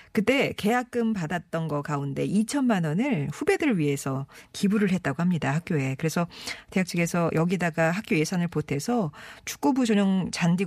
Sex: female